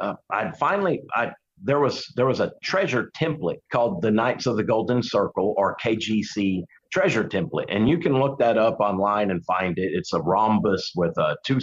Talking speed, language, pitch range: 195 wpm, English, 105-135 Hz